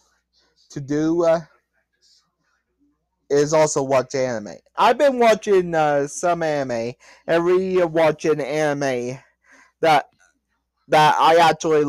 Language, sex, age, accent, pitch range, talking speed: English, male, 30-49, American, 145-205 Hz, 105 wpm